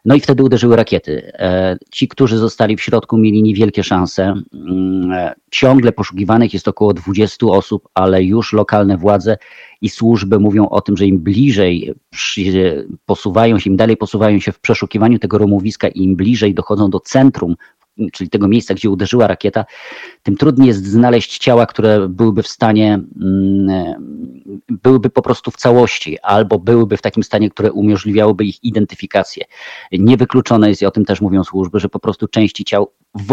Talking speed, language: 160 wpm, Polish